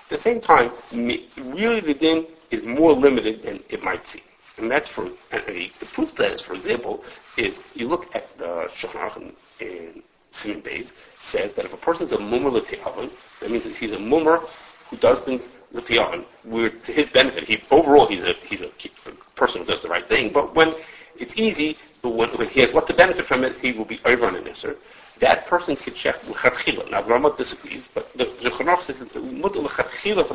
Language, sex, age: English, male, 50-69